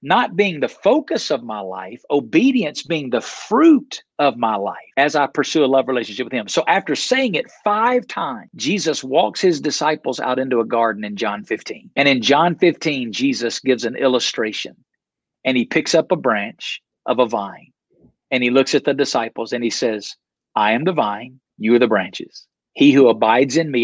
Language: English